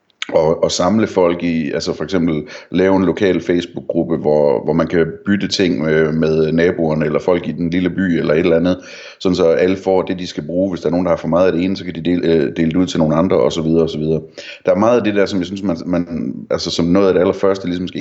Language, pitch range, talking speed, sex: Danish, 80-95 Hz, 265 wpm, male